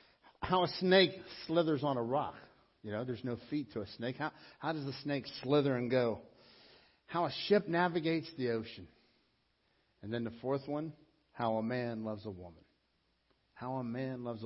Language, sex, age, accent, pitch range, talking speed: English, male, 50-69, American, 140-220 Hz, 185 wpm